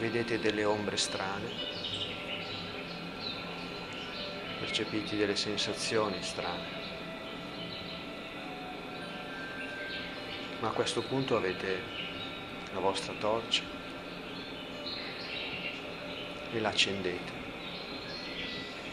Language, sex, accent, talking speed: Italian, male, native, 55 wpm